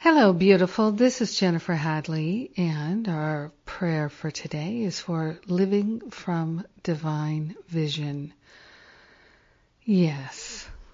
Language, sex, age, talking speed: English, female, 50-69, 100 wpm